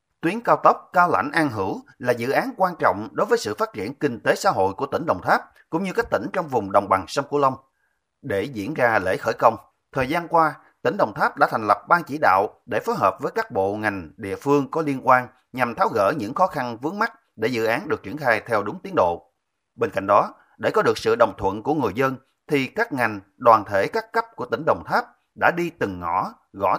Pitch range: 100-165 Hz